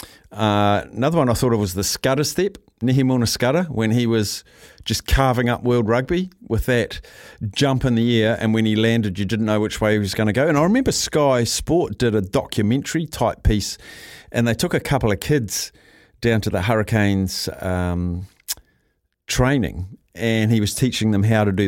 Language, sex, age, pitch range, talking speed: English, male, 50-69, 105-125 Hz, 195 wpm